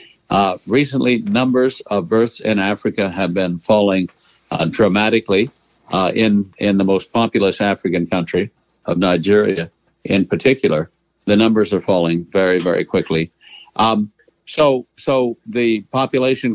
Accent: American